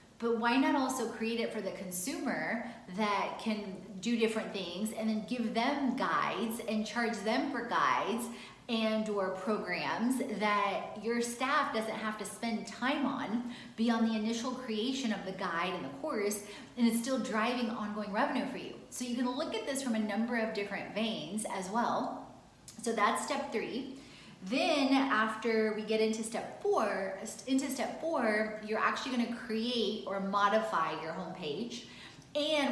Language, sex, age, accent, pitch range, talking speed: English, female, 30-49, American, 205-235 Hz, 170 wpm